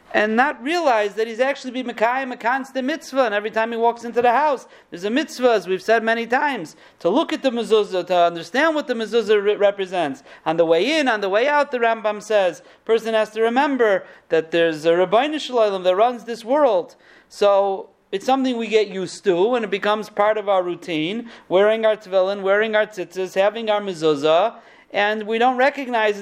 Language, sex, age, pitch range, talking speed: English, male, 40-59, 195-250 Hz, 205 wpm